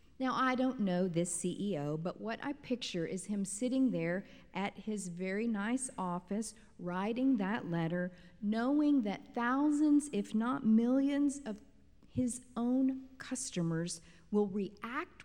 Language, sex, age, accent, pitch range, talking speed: English, female, 50-69, American, 160-220 Hz, 135 wpm